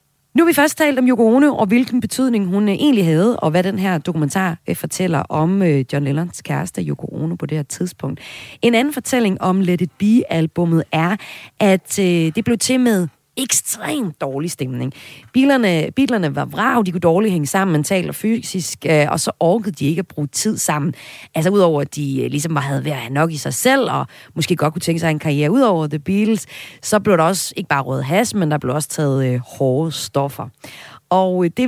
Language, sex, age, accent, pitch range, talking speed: Danish, female, 30-49, native, 150-210 Hz, 205 wpm